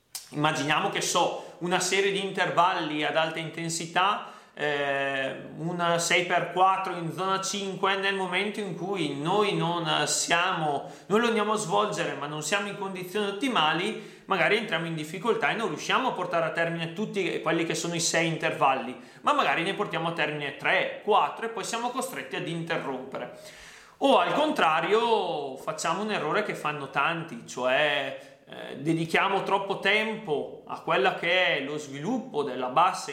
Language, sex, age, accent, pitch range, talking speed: Italian, male, 30-49, native, 155-210 Hz, 155 wpm